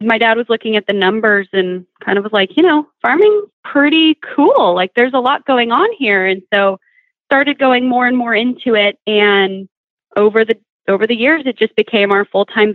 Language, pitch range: English, 185-250 Hz